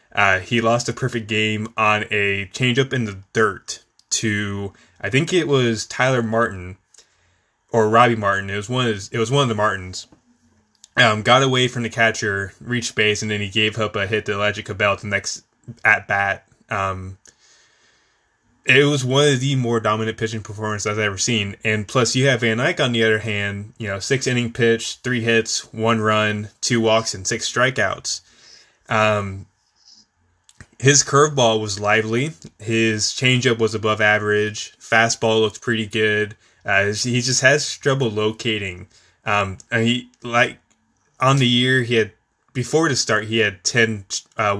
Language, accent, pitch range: English, American, 105-120 Hz